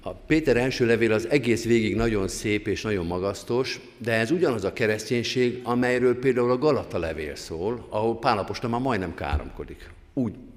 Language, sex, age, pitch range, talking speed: Hungarian, male, 50-69, 90-135 Hz, 170 wpm